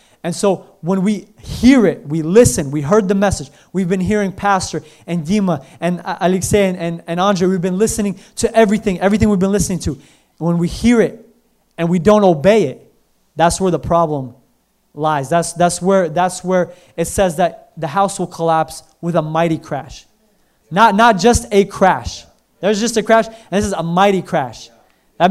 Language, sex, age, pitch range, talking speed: English, male, 20-39, 165-200 Hz, 190 wpm